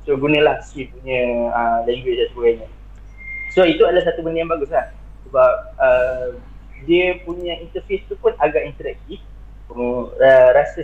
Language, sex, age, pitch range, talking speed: Malay, male, 20-39, 130-210 Hz, 135 wpm